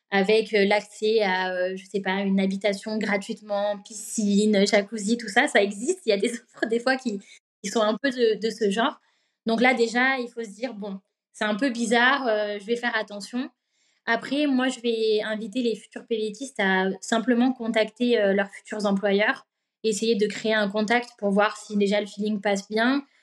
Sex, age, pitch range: female, 20-39, 200-230 Hz